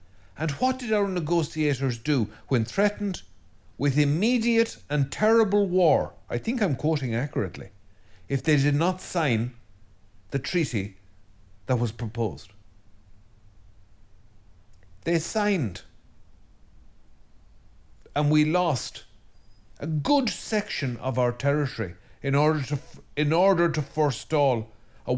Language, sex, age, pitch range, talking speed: English, male, 50-69, 100-145 Hz, 110 wpm